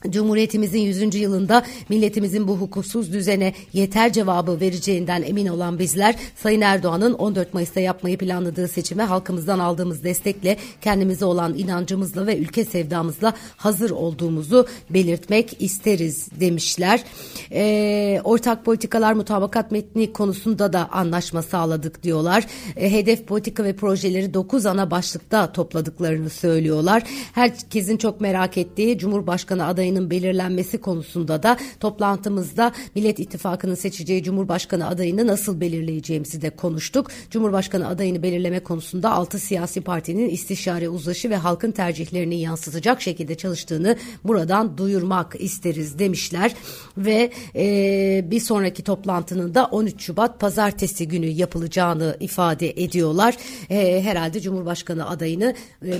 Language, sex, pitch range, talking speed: Turkish, female, 175-210 Hz, 120 wpm